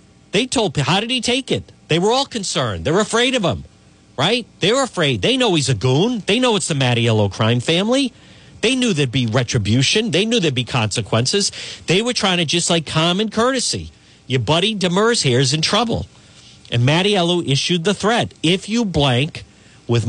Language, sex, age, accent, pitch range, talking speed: English, male, 50-69, American, 125-210 Hz, 195 wpm